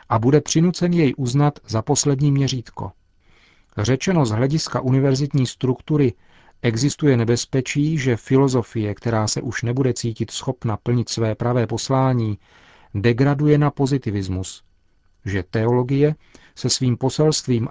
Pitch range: 110-135 Hz